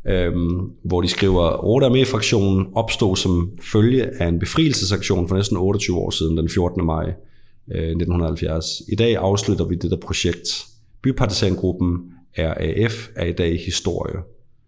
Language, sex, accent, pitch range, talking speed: Danish, male, native, 85-110 Hz, 145 wpm